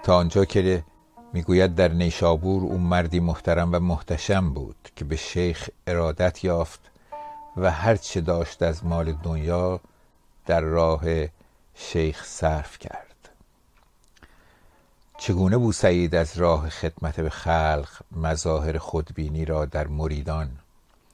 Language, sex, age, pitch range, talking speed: Persian, male, 60-79, 80-90 Hz, 115 wpm